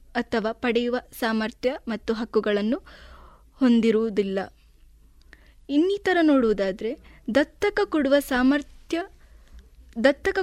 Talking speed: 70 wpm